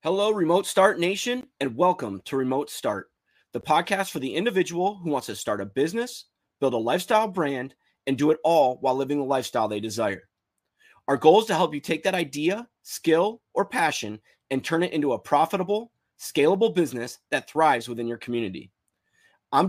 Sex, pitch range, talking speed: male, 125-190 Hz, 185 wpm